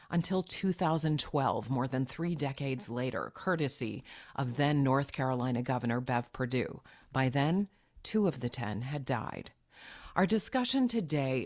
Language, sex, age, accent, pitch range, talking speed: English, female, 40-59, American, 130-160 Hz, 135 wpm